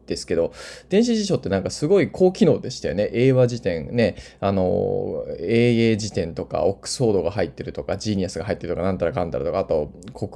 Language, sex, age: Japanese, male, 20-39